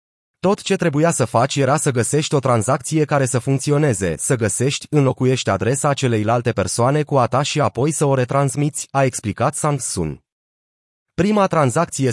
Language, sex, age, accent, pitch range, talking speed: Romanian, male, 30-49, native, 120-150 Hz, 165 wpm